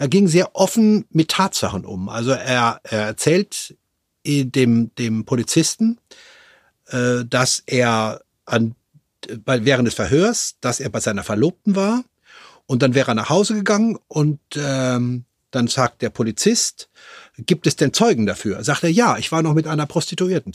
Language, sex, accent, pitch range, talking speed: German, male, German, 120-165 Hz, 155 wpm